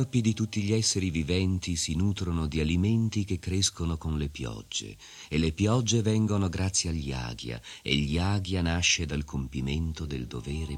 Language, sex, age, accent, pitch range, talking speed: Italian, male, 40-59, native, 75-105 Hz, 175 wpm